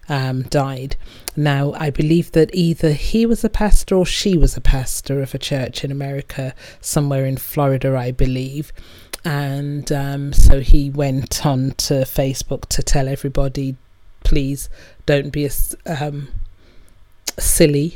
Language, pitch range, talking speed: English, 130-145 Hz, 145 wpm